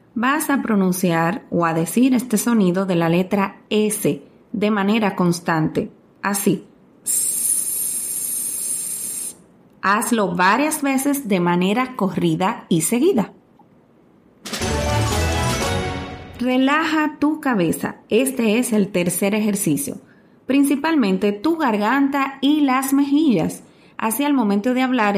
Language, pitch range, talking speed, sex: Spanish, 190-265 Hz, 100 wpm, female